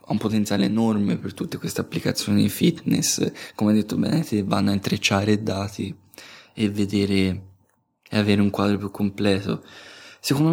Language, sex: English, male